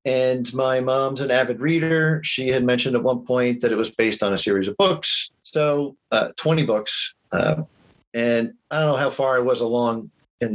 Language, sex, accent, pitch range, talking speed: English, male, American, 120-150 Hz, 205 wpm